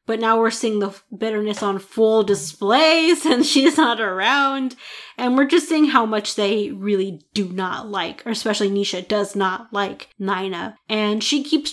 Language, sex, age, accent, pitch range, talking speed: English, female, 20-39, American, 205-260 Hz, 175 wpm